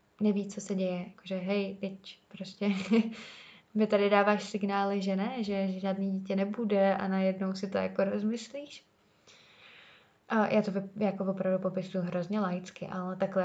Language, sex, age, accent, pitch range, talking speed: Czech, female, 20-39, native, 195-215 Hz, 160 wpm